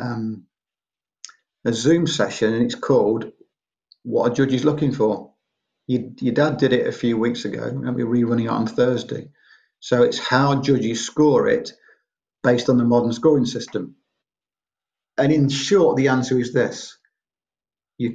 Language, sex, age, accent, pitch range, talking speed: English, male, 50-69, British, 110-140 Hz, 160 wpm